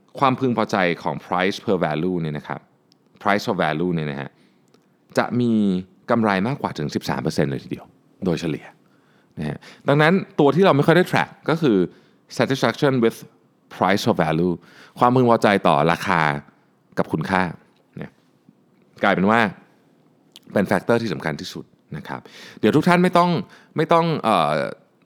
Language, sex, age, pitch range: Thai, male, 30-49, 85-125 Hz